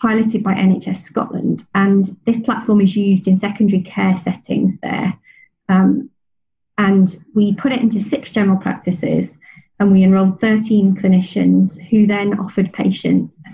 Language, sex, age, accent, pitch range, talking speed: English, female, 30-49, British, 185-220 Hz, 145 wpm